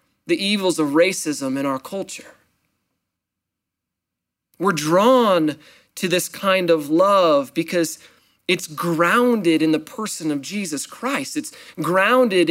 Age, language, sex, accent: 30-49, English, male, American